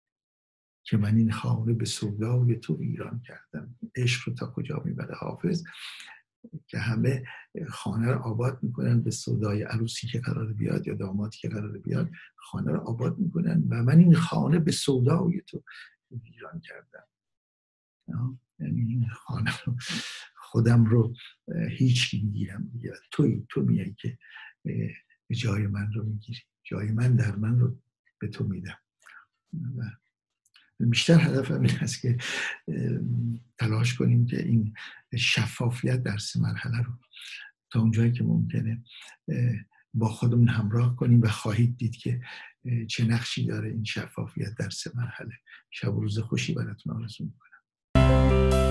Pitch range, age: 110-125 Hz, 60-79